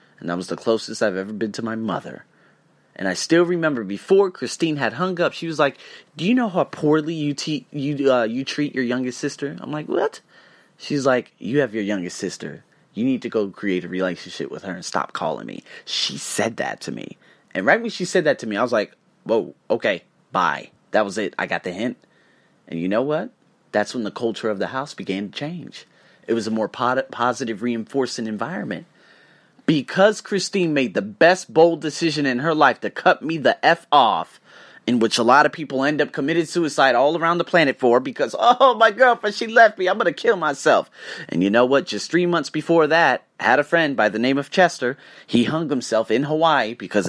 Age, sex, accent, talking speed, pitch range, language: 30-49, male, American, 220 wpm, 120-170 Hz, English